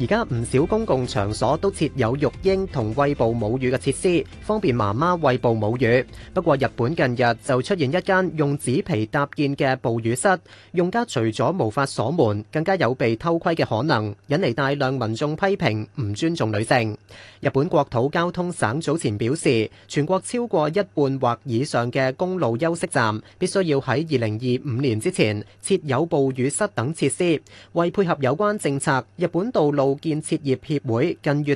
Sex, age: male, 30-49